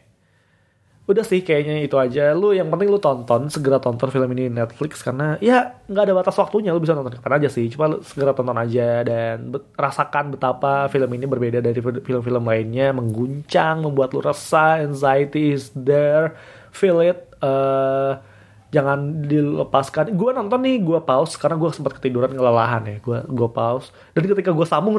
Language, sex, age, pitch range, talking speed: Indonesian, male, 20-39, 125-155 Hz, 170 wpm